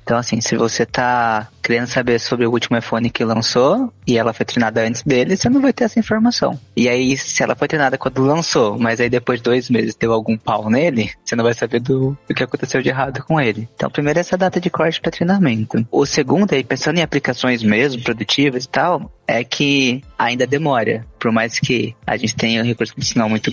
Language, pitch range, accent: Portuguese, 115-145 Hz, Brazilian